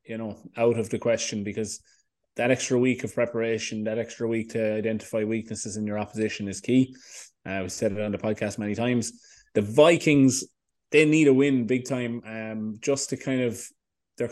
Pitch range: 105-130 Hz